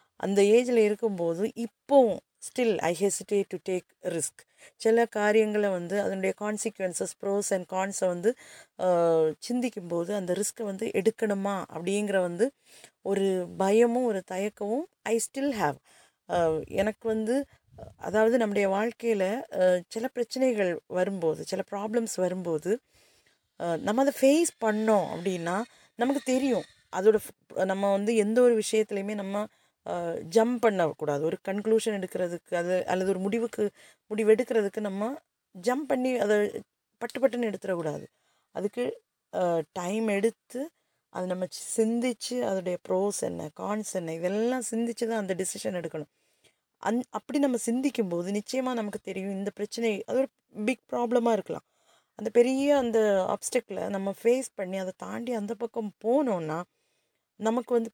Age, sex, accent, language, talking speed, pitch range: 30-49, female, native, Tamil, 125 wpm, 190-235 Hz